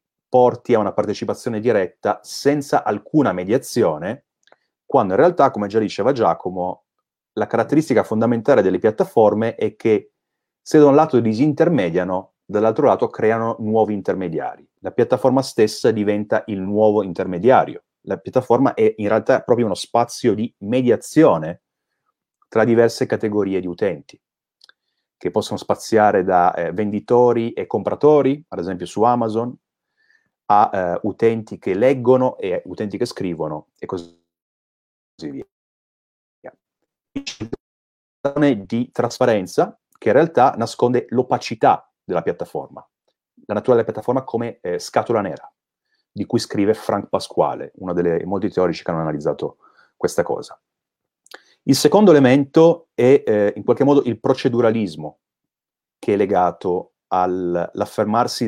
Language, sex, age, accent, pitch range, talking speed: Italian, male, 30-49, native, 105-145 Hz, 125 wpm